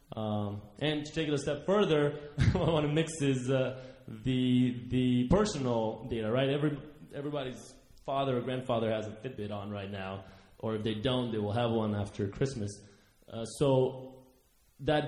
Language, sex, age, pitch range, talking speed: English, male, 20-39, 115-140 Hz, 175 wpm